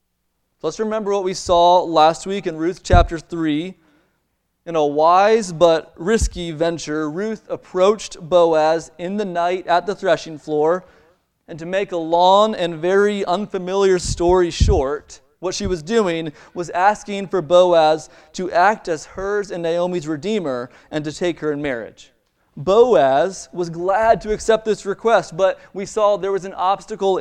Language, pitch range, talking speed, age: English, 155-195 Hz, 160 wpm, 30-49